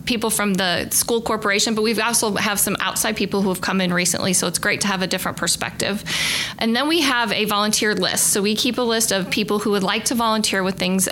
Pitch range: 190-220 Hz